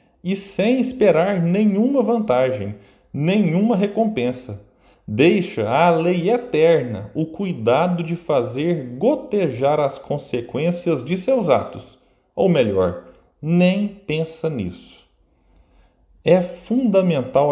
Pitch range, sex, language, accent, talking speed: 130-195 Hz, male, Portuguese, Brazilian, 95 wpm